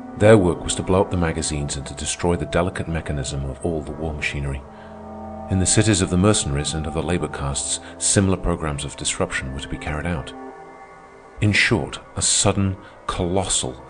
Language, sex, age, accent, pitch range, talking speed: English, male, 40-59, British, 75-90 Hz, 190 wpm